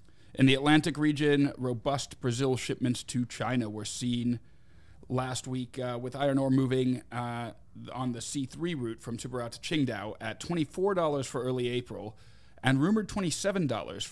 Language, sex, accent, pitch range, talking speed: English, male, American, 115-135 Hz, 150 wpm